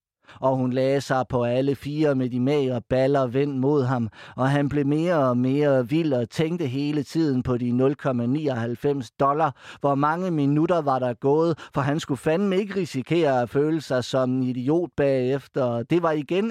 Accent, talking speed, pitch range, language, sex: native, 190 wpm, 125-150 Hz, Danish, male